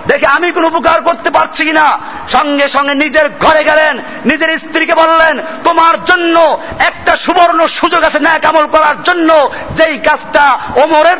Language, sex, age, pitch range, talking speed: Bengali, male, 50-69, 255-320 Hz, 155 wpm